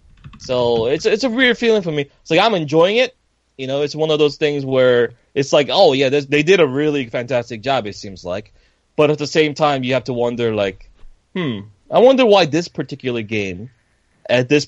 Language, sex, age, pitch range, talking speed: English, male, 20-39, 120-150 Hz, 215 wpm